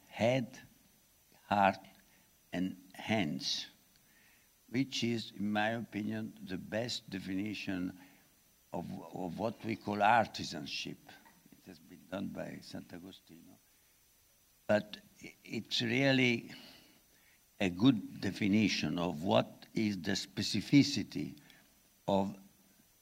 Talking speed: 95 wpm